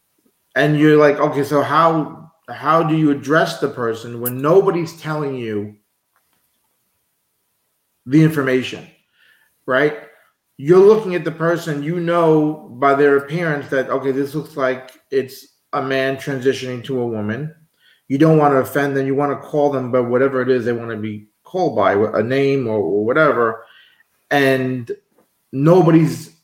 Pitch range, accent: 125-150 Hz, American